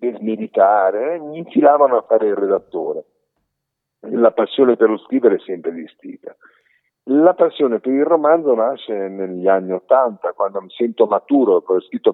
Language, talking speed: Italian, 170 wpm